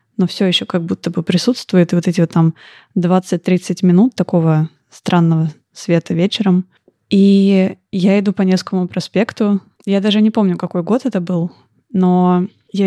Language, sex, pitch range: Russian, female, 175-200 Hz